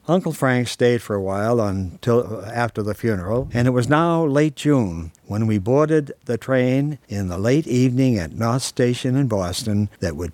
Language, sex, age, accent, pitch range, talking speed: English, male, 60-79, American, 105-135 Hz, 185 wpm